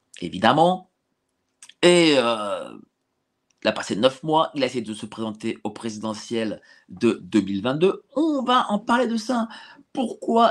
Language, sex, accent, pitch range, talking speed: French, male, French, 135-215 Hz, 145 wpm